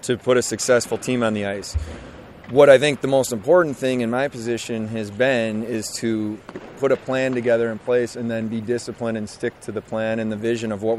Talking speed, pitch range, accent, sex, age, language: 230 wpm, 115-125 Hz, American, male, 30-49, English